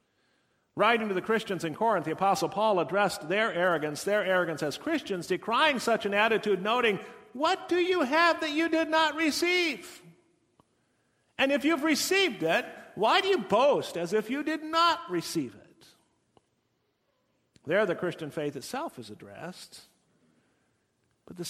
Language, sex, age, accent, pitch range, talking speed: English, male, 50-69, American, 155-230 Hz, 155 wpm